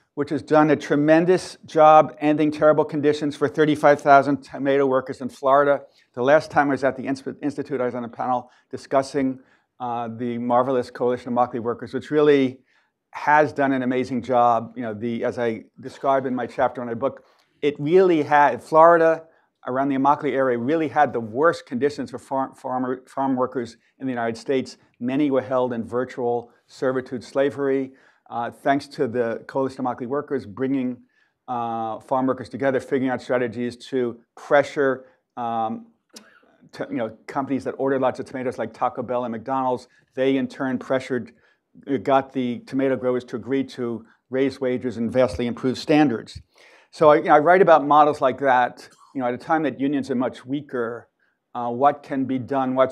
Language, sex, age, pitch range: English, male, 50-69, 125-140 Hz